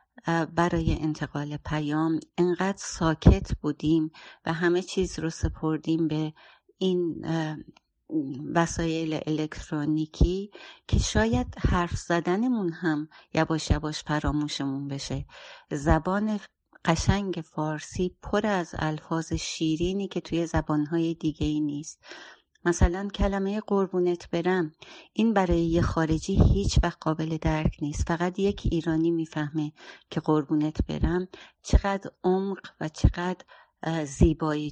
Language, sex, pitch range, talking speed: Persian, female, 155-180 Hz, 105 wpm